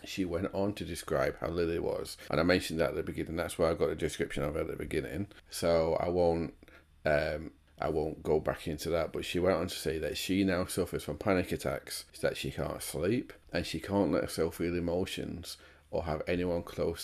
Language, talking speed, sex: English, 225 wpm, male